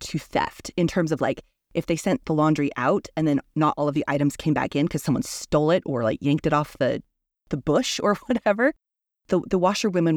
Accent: American